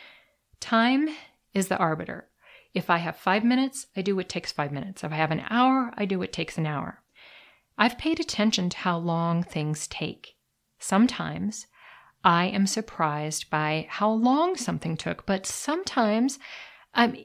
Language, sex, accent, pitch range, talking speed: English, female, American, 170-240 Hz, 160 wpm